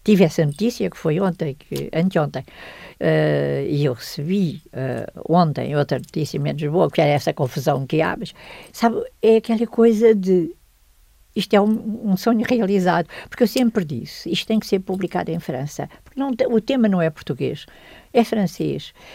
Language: Portuguese